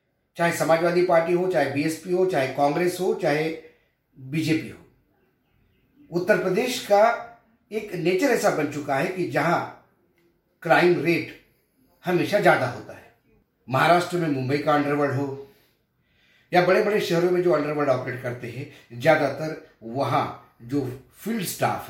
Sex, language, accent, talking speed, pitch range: male, Hindi, native, 140 wpm, 125-175 Hz